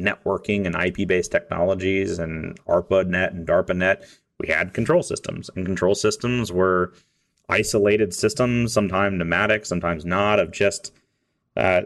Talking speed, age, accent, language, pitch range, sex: 125 wpm, 30-49, American, English, 95-110 Hz, male